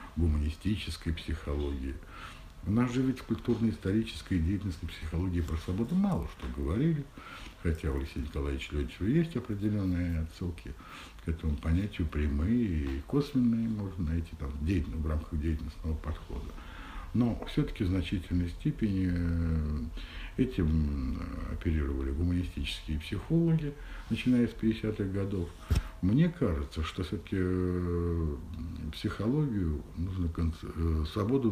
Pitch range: 80-100 Hz